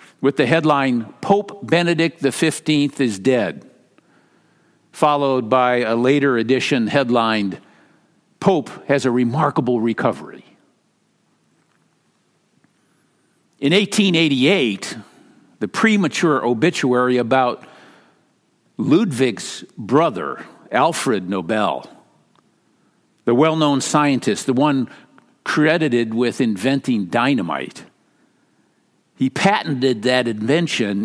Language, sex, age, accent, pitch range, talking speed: English, male, 50-69, American, 120-160 Hz, 80 wpm